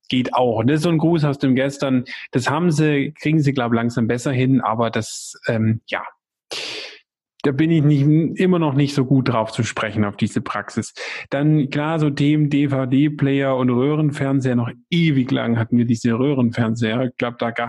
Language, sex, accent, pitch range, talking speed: German, male, German, 120-145 Hz, 190 wpm